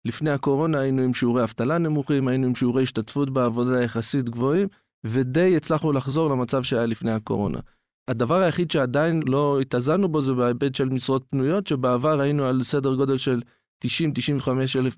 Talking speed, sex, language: 160 wpm, male, Hebrew